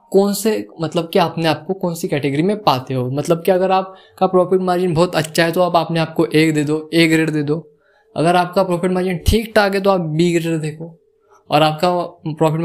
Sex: male